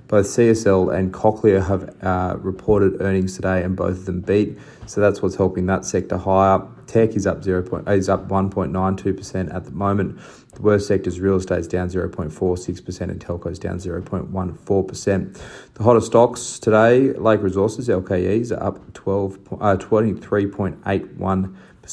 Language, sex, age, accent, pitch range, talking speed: English, male, 20-39, Australian, 90-105 Hz, 160 wpm